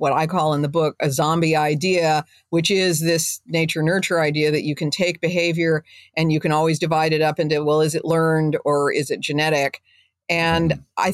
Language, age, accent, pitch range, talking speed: English, 50-69, American, 160-190 Hz, 205 wpm